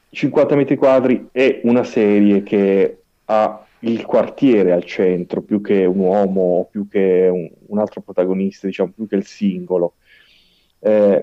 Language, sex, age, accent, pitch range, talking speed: Italian, male, 30-49, native, 95-110 Hz, 150 wpm